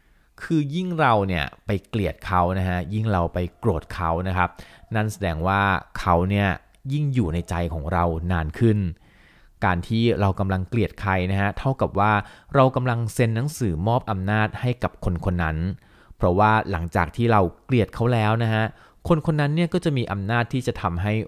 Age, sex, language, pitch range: 30-49, male, Thai, 90-115 Hz